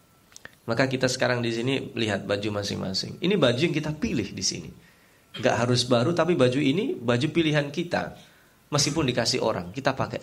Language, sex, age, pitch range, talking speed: Indonesian, male, 20-39, 110-145 Hz, 170 wpm